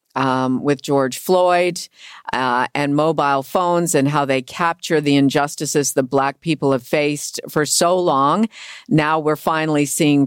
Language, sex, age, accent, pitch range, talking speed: English, female, 50-69, American, 145-180 Hz, 150 wpm